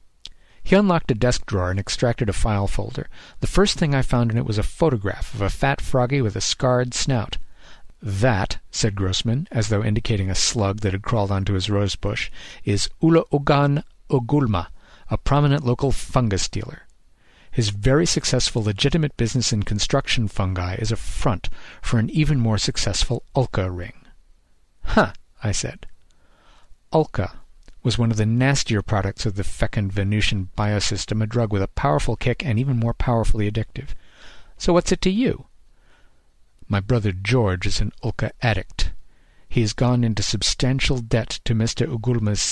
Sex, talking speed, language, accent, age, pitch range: male, 165 wpm, English, American, 50-69, 100-125 Hz